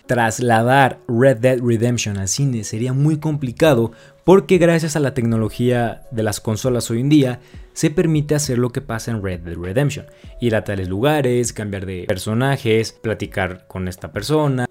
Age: 30-49